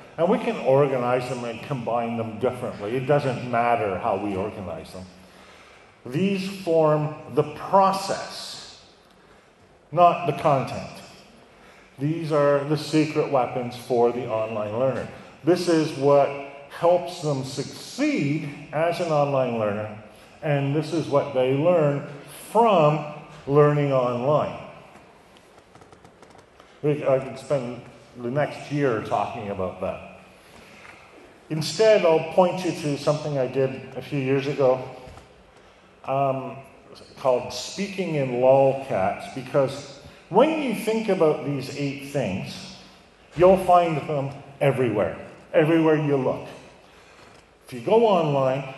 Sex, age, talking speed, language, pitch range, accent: male, 50-69, 120 wpm, English, 130-160 Hz, American